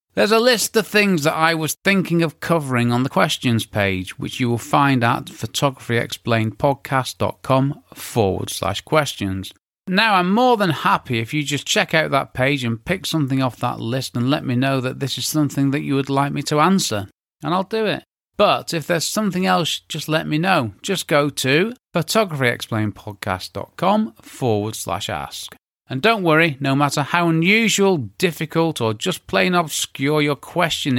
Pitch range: 110-165 Hz